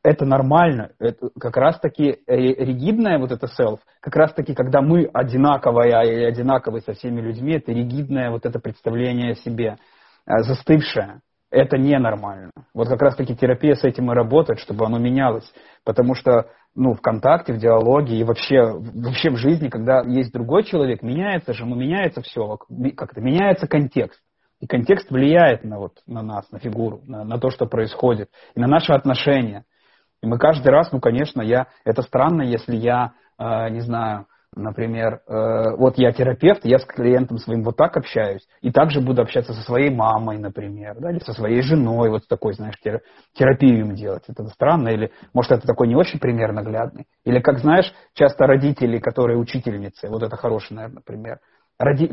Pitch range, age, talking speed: 115-140 Hz, 30-49, 180 wpm